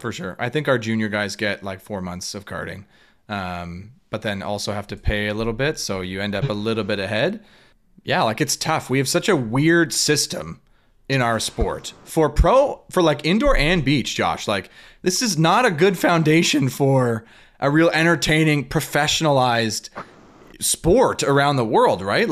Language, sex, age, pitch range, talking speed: English, male, 30-49, 115-155 Hz, 185 wpm